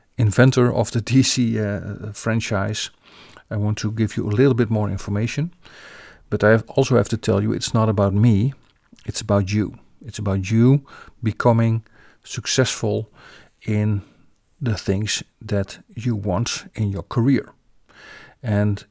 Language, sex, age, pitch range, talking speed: English, male, 50-69, 100-120 Hz, 145 wpm